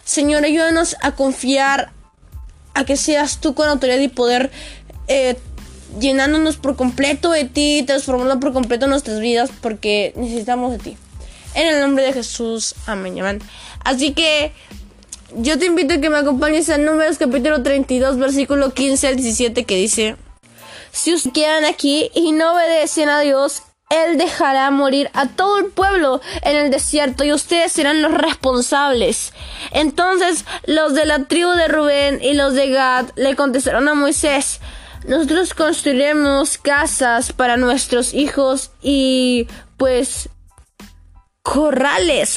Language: Spanish